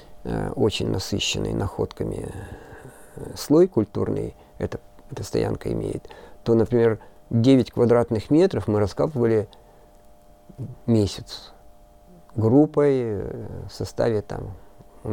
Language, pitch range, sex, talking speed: Russian, 100-130 Hz, male, 85 wpm